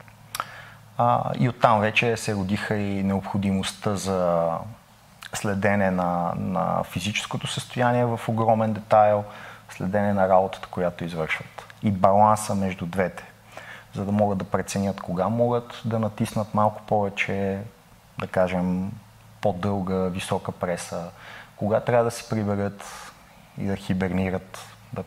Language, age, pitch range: Bulgarian, 30-49, 95-110 Hz